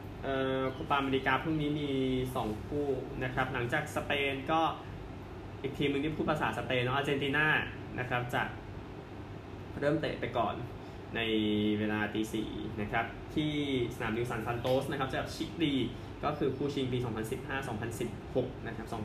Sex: male